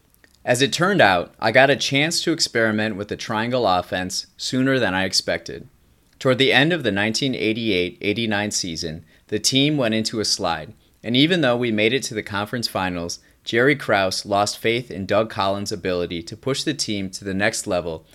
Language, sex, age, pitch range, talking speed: English, male, 30-49, 95-125 Hz, 190 wpm